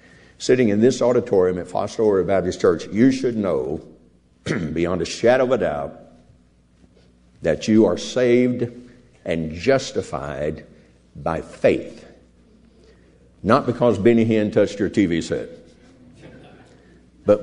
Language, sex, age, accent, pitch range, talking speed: English, male, 60-79, American, 70-115 Hz, 120 wpm